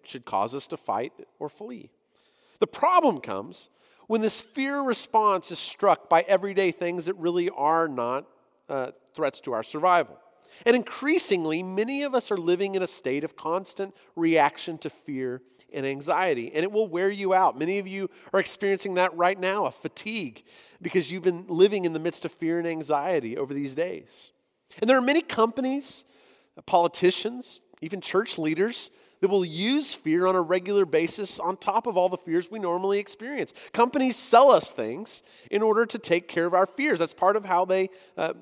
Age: 40-59